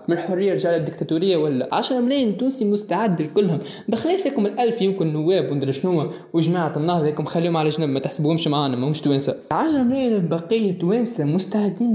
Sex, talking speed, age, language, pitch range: male, 160 wpm, 20-39, Arabic, 155-205 Hz